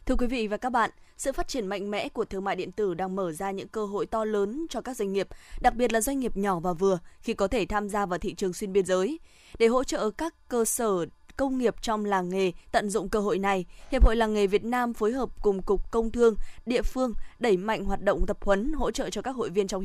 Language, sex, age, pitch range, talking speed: Vietnamese, female, 20-39, 195-240 Hz, 270 wpm